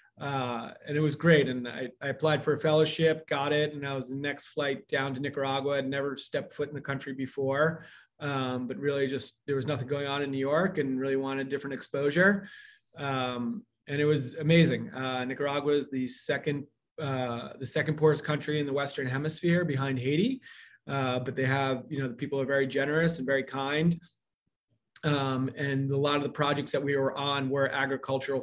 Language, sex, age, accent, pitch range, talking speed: English, male, 30-49, American, 135-150 Hz, 205 wpm